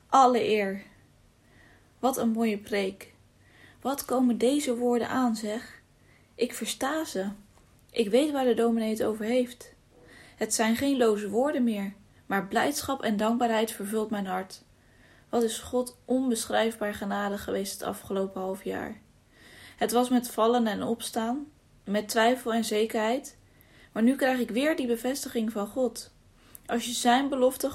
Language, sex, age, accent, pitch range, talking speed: English, female, 10-29, Dutch, 215-245 Hz, 145 wpm